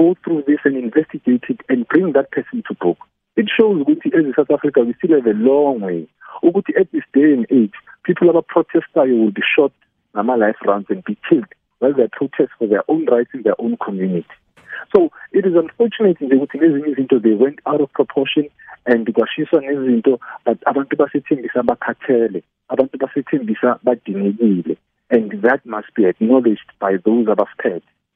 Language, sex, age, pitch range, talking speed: English, male, 50-69, 120-180 Hz, 165 wpm